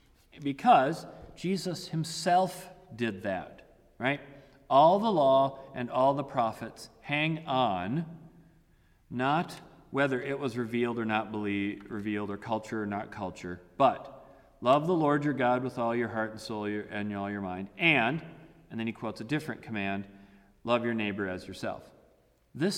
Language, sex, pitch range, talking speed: English, male, 100-135 Hz, 155 wpm